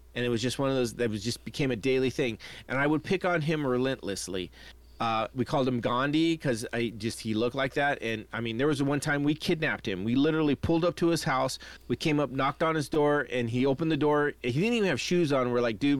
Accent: American